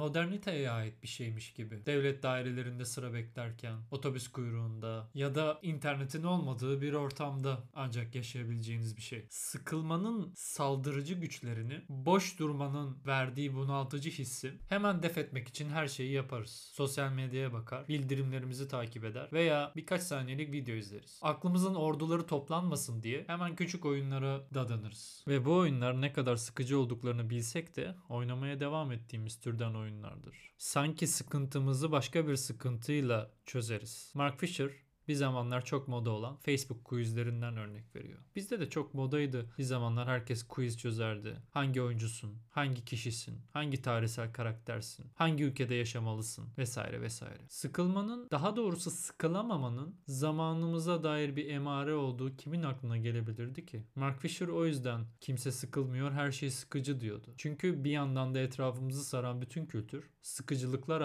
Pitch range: 120-150 Hz